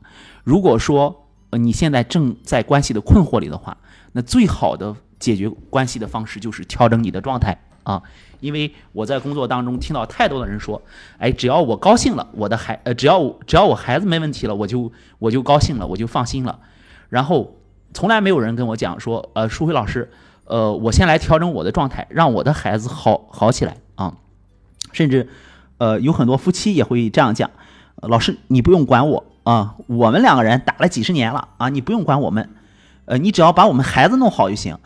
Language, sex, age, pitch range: Chinese, male, 30-49, 105-140 Hz